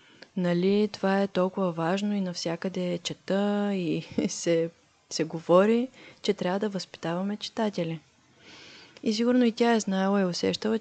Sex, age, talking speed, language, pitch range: female, 20-39, 145 wpm, Bulgarian, 165-210 Hz